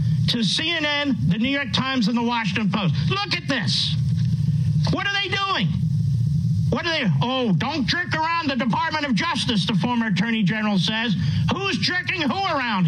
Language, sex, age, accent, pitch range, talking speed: English, male, 50-69, American, 150-230 Hz, 170 wpm